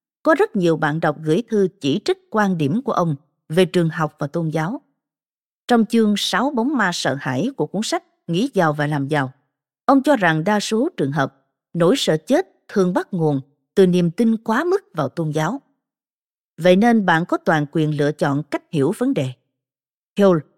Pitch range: 155-245 Hz